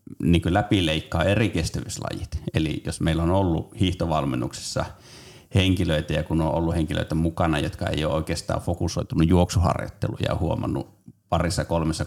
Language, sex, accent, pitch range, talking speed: Finnish, male, native, 80-100 Hz, 135 wpm